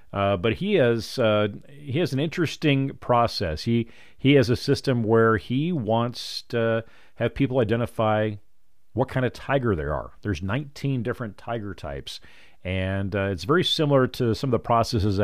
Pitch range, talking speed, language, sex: 100-125 Hz, 170 wpm, English, male